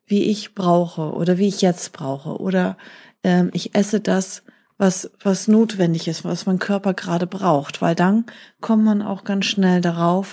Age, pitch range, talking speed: 30-49, 180-215 Hz, 175 wpm